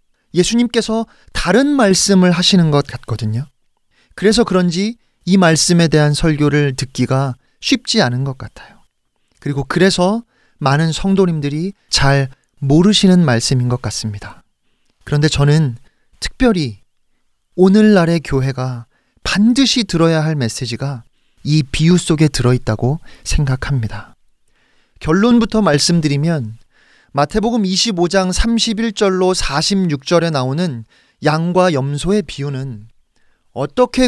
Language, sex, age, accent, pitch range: Korean, male, 40-59, native, 140-210 Hz